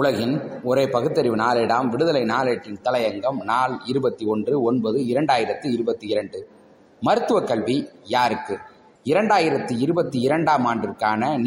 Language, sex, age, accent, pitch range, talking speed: Tamil, male, 30-49, native, 135-195 Hz, 80 wpm